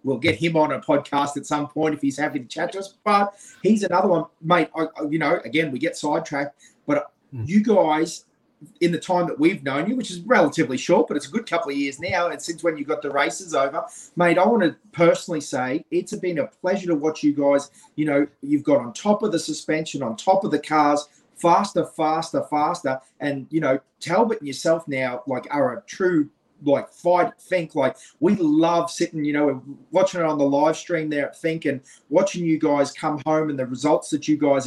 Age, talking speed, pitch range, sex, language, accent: 30-49, 225 wpm, 145-180 Hz, male, English, Australian